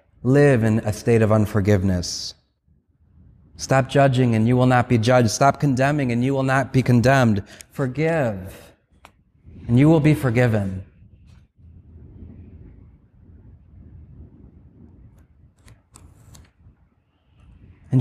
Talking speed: 95 wpm